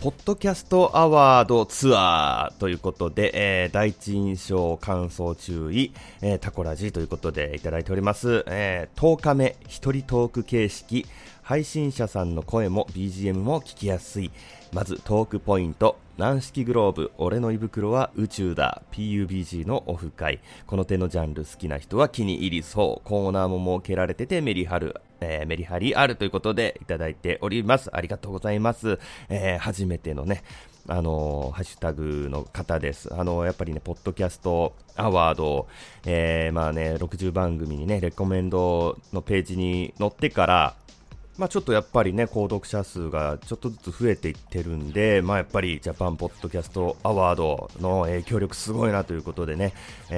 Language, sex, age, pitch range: Japanese, male, 30-49, 85-110 Hz